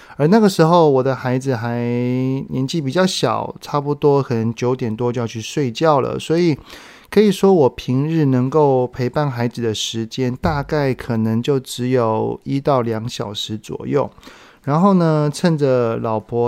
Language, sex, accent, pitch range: Chinese, male, native, 120-150 Hz